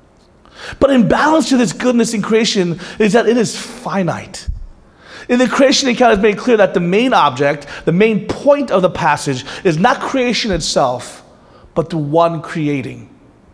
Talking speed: 165 wpm